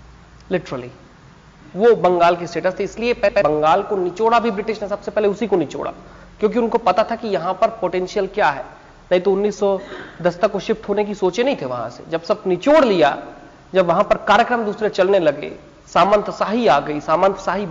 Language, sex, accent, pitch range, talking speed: Hindi, male, native, 160-210 Hz, 190 wpm